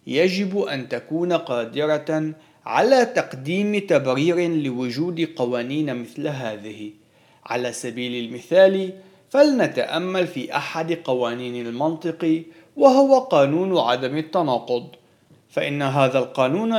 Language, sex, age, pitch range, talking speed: Arabic, male, 40-59, 135-195 Hz, 95 wpm